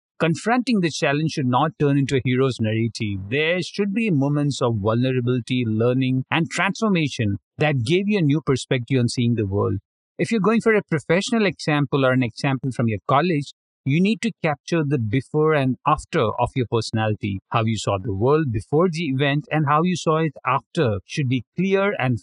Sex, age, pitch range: male, 50-69, 115-155 Hz